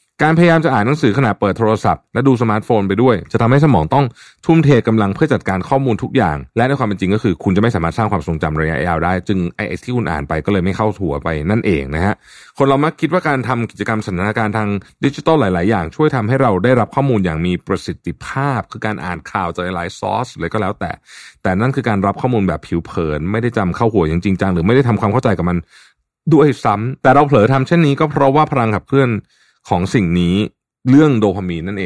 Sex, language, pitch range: male, Thai, 90-130 Hz